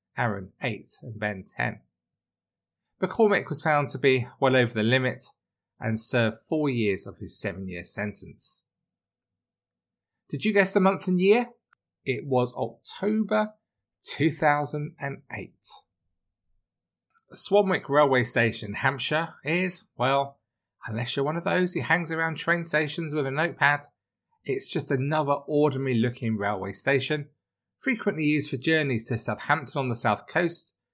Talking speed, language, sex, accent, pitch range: 135 wpm, English, male, British, 105-150 Hz